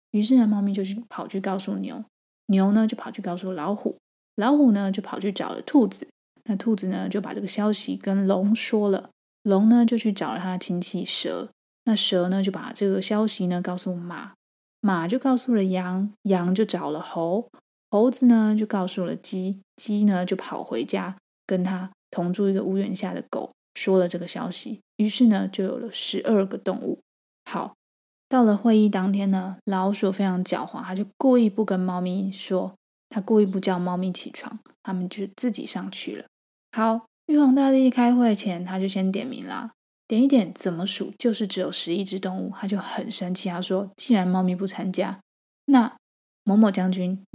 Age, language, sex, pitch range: 20-39, Chinese, female, 190-225 Hz